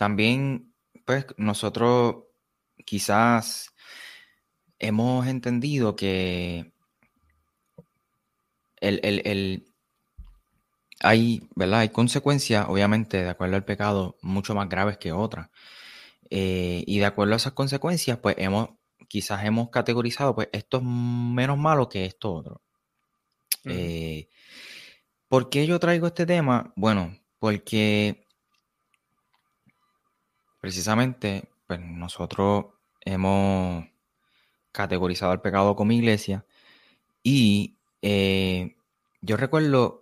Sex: male